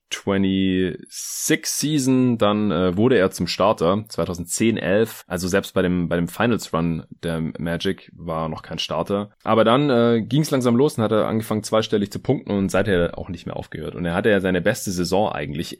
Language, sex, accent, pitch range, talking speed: German, male, German, 90-105 Hz, 195 wpm